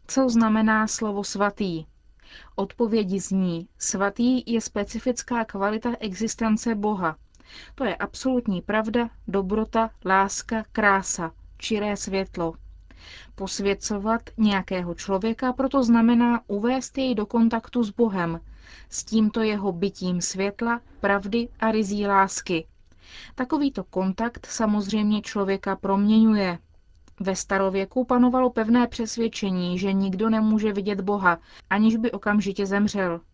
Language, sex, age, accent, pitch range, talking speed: Czech, female, 30-49, native, 195-230 Hz, 110 wpm